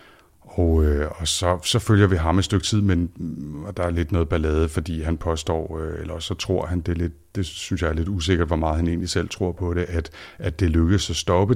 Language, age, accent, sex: Danish, 60-79, native, male